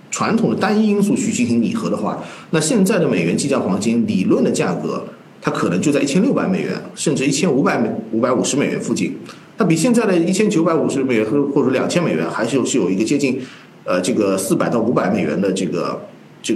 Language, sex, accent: Chinese, male, native